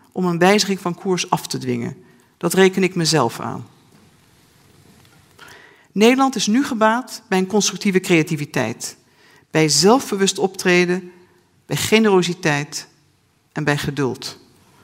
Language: Dutch